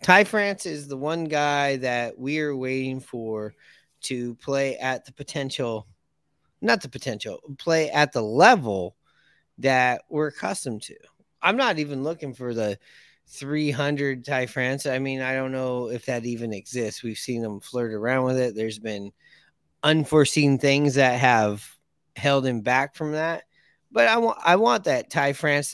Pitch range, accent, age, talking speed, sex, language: 120-145 Hz, American, 30-49, 165 wpm, male, English